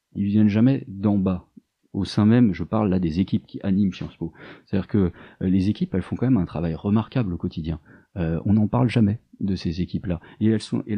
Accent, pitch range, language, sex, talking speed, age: French, 90-125 Hz, French, male, 230 wpm, 40-59